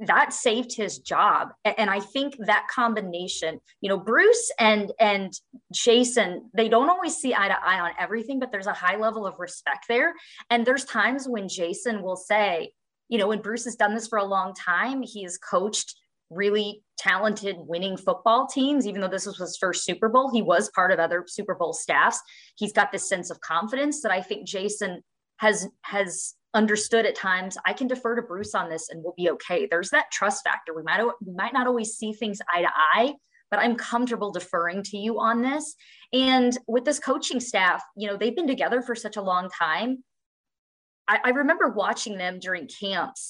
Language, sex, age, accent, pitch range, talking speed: English, female, 20-39, American, 195-250 Hz, 200 wpm